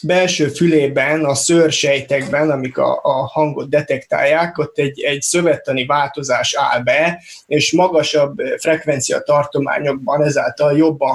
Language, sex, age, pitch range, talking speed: Hungarian, male, 20-39, 140-155 Hz, 120 wpm